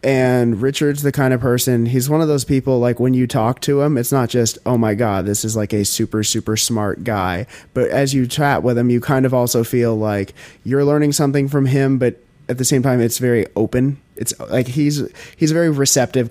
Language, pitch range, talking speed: English, 110-130 Hz, 230 wpm